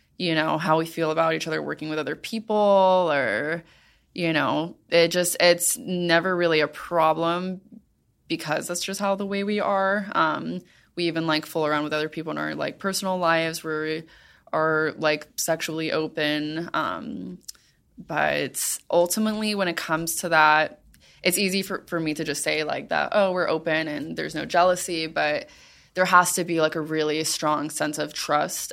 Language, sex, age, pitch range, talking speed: English, female, 20-39, 155-180 Hz, 180 wpm